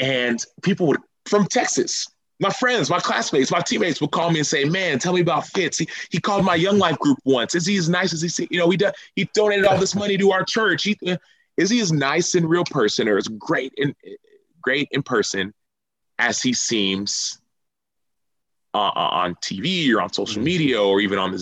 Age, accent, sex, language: 30-49, American, male, English